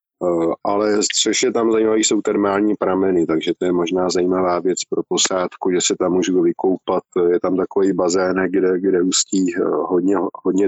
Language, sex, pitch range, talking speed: Slovak, male, 90-110 Hz, 165 wpm